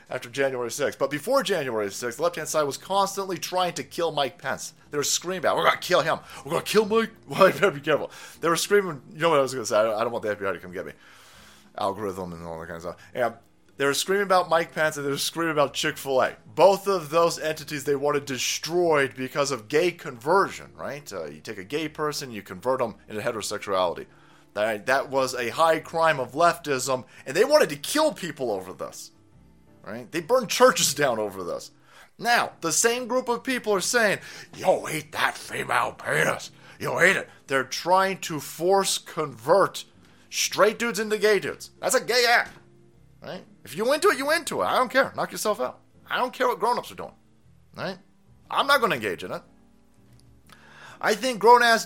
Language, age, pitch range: English, 30-49, 135-210 Hz